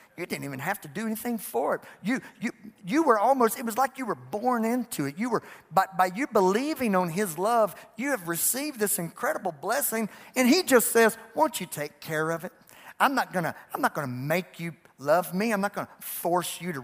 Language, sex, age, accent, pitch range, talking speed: English, male, 50-69, American, 170-255 Hz, 220 wpm